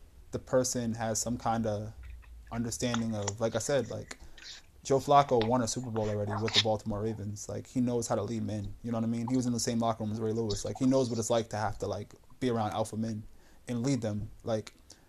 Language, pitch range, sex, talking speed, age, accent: English, 105-125 Hz, male, 250 wpm, 20-39, American